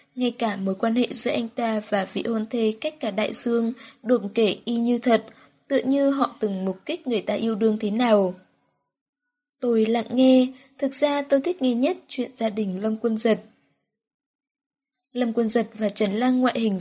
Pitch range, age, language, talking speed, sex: 215-260 Hz, 10-29, Vietnamese, 200 wpm, female